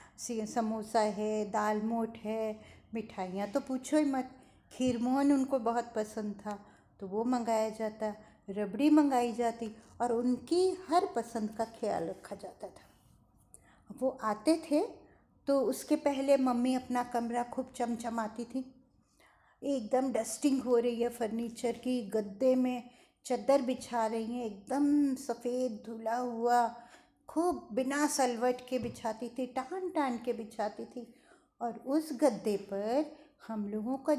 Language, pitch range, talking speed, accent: Hindi, 220-275 Hz, 140 wpm, native